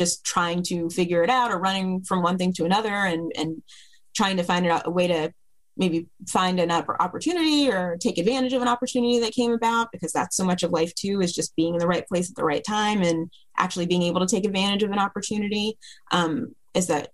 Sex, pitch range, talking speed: female, 165-195 Hz, 235 wpm